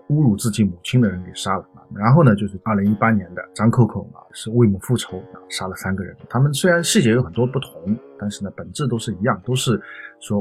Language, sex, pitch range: Chinese, male, 100-130 Hz